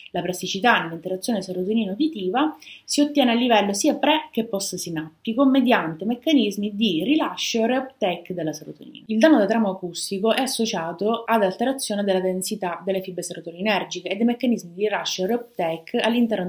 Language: Italian